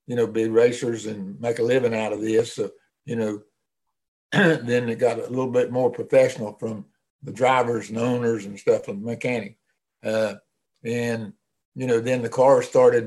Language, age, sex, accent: English, 60-79, male, American